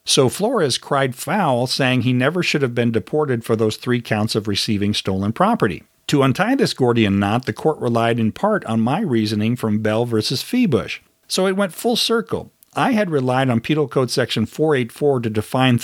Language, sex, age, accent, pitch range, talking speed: English, male, 50-69, American, 110-145 Hz, 195 wpm